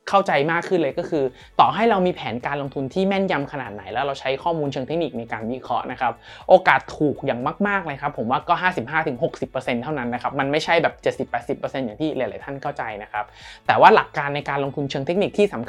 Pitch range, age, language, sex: 125-165 Hz, 20-39, Thai, male